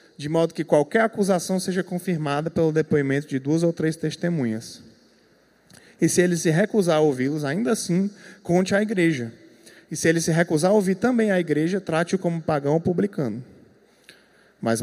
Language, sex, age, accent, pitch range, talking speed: Portuguese, male, 20-39, Brazilian, 150-205 Hz, 170 wpm